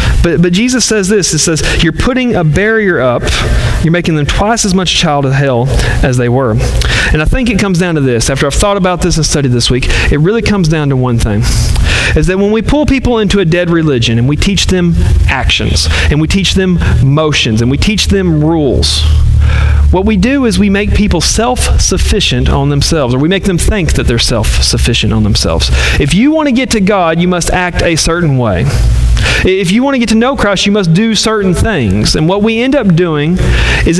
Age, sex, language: 40-59, male, English